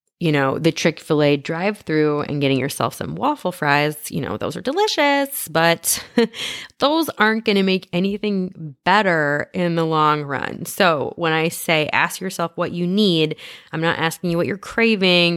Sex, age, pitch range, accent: female, 20-39, 150-210 Hz, American